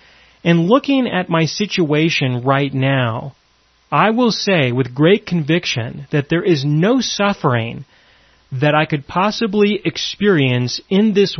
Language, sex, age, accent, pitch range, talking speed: English, male, 40-59, American, 135-190 Hz, 130 wpm